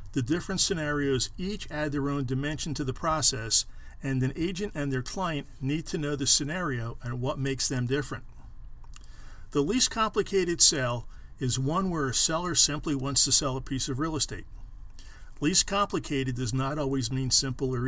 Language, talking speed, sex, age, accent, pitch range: English, 180 wpm, male, 50-69, American, 125-150 Hz